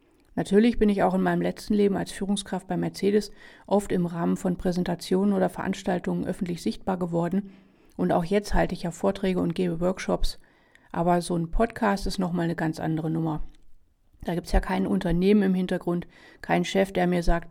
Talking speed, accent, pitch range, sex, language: 190 wpm, German, 170-205 Hz, female, German